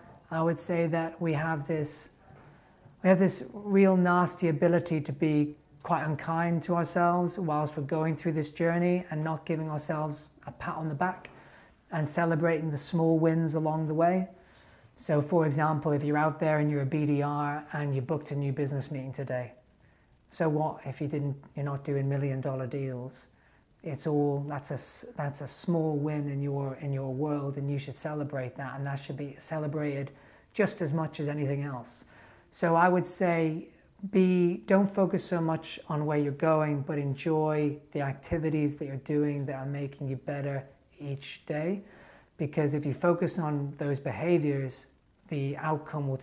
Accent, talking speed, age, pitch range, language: British, 180 wpm, 30-49, 140-165 Hz, English